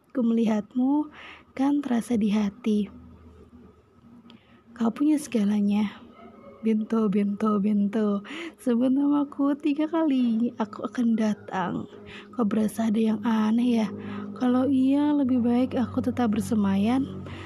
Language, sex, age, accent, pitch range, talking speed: Indonesian, female, 20-39, native, 210-260 Hz, 110 wpm